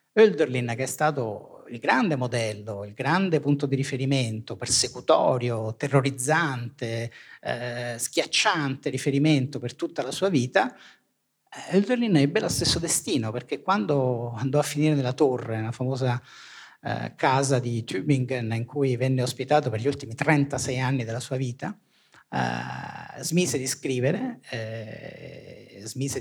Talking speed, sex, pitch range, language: 135 wpm, male, 120-145 Hz, Italian